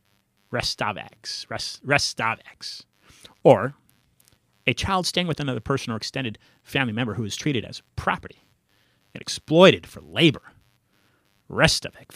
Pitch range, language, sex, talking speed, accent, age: 110-155 Hz, English, male, 115 wpm, American, 30-49